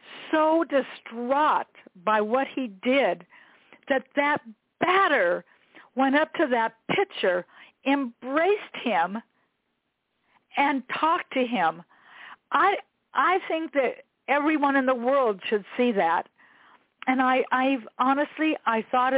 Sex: female